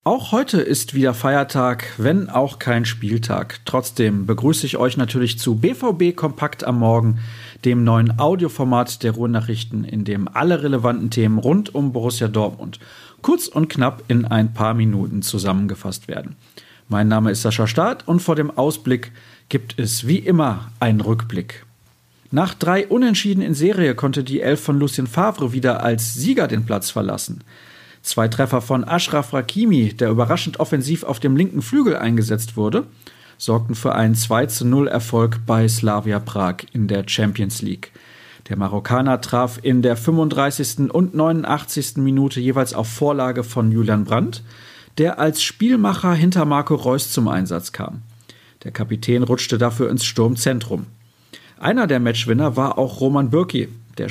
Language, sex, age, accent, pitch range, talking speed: German, male, 40-59, German, 115-145 Hz, 150 wpm